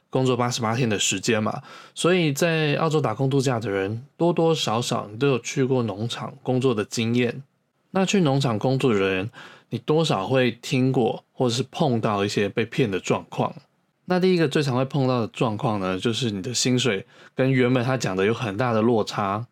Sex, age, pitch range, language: male, 20-39, 115-140 Hz, Chinese